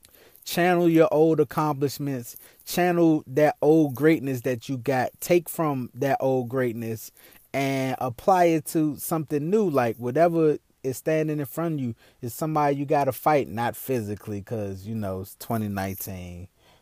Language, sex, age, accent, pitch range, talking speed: English, male, 20-39, American, 110-140 Hz, 155 wpm